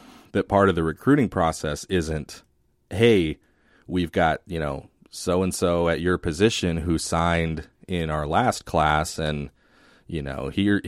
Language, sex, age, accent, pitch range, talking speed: English, male, 30-49, American, 80-95 Hz, 145 wpm